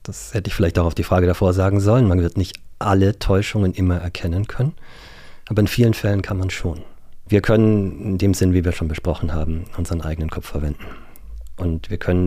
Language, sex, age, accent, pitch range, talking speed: German, male, 40-59, German, 80-100 Hz, 210 wpm